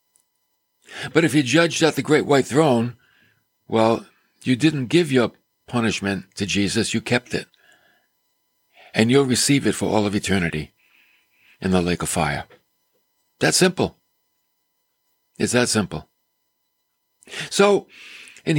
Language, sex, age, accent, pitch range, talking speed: English, male, 60-79, American, 120-160 Hz, 130 wpm